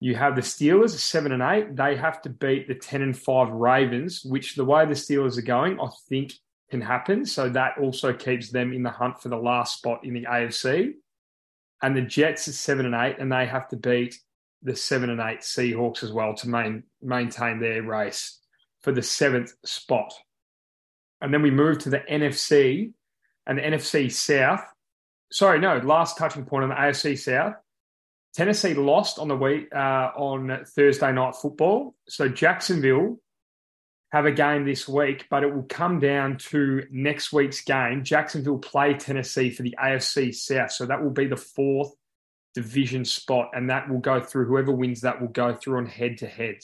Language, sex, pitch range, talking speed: English, male, 120-140 Hz, 185 wpm